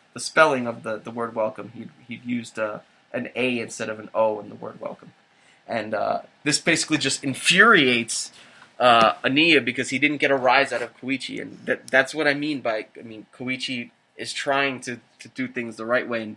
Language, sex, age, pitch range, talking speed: English, male, 20-39, 115-145 Hz, 215 wpm